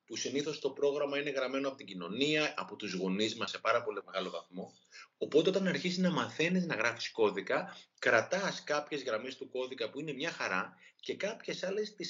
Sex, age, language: male, 30-49, Greek